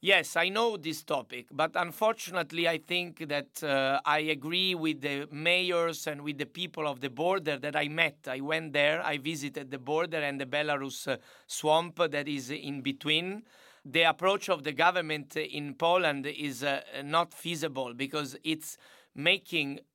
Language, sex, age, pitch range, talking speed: Polish, male, 30-49, 150-180 Hz, 170 wpm